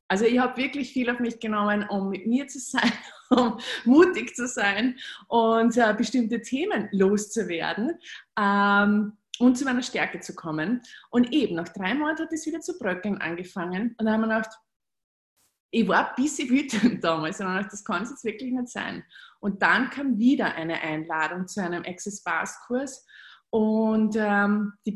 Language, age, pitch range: German, 20-39, 190-240 Hz